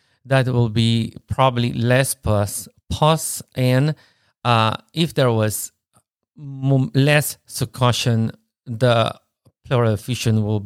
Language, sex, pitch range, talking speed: English, male, 110-130 Hz, 105 wpm